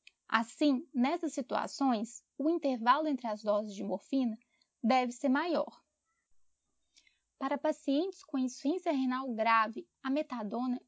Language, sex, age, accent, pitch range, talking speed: Portuguese, female, 10-29, Brazilian, 240-295 Hz, 115 wpm